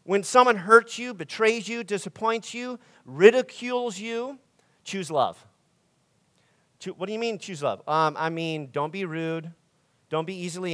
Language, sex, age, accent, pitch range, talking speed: English, male, 40-59, American, 155-195 Hz, 150 wpm